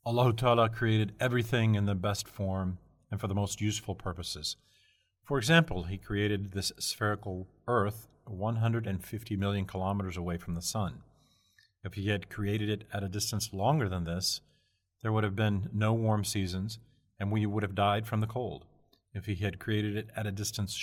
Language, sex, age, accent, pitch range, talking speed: English, male, 40-59, American, 95-115 Hz, 180 wpm